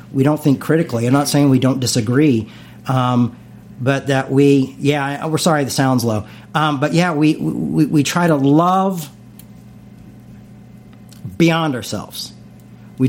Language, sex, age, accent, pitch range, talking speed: English, male, 40-59, American, 125-150 Hz, 155 wpm